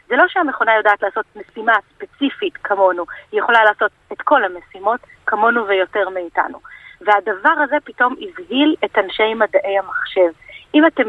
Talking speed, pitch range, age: 145 wpm, 200-295 Hz, 30-49